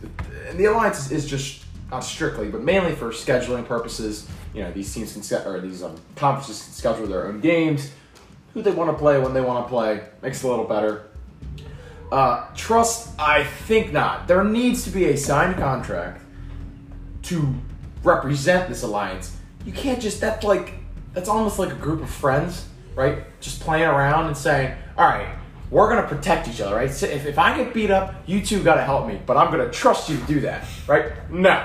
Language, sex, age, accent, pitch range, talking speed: English, male, 20-39, American, 125-190 Hz, 200 wpm